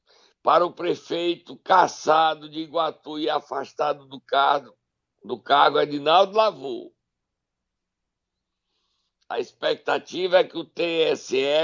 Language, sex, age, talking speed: Portuguese, male, 60-79, 105 wpm